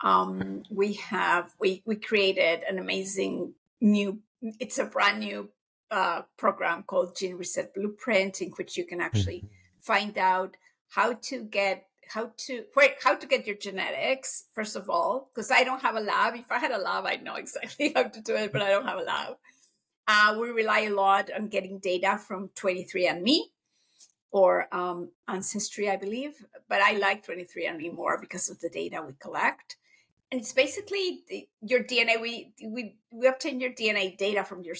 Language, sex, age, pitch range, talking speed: English, female, 50-69, 185-230 Hz, 180 wpm